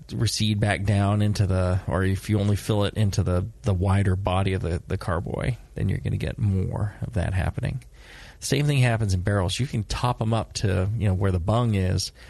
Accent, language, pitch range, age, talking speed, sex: American, English, 90-110 Hz, 30-49, 225 wpm, male